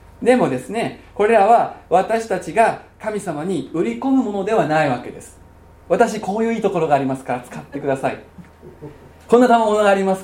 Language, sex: Japanese, male